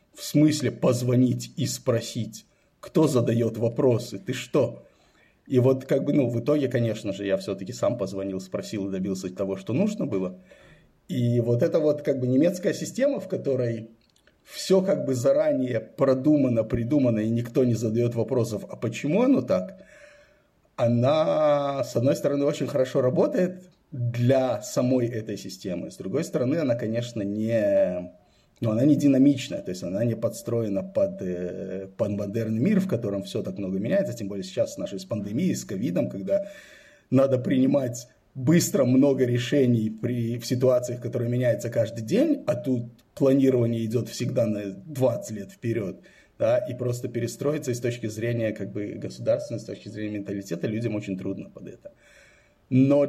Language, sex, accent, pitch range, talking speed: Russian, male, native, 110-140 Hz, 160 wpm